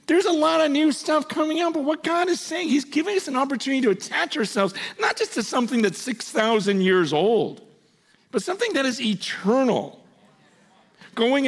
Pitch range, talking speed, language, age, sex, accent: 210-290 Hz, 185 wpm, English, 50-69, male, American